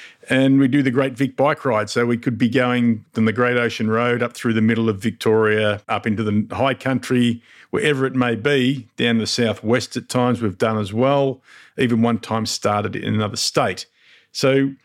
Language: English